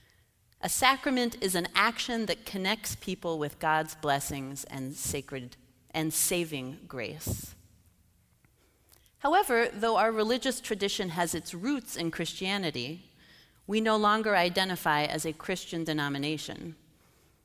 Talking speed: 115 wpm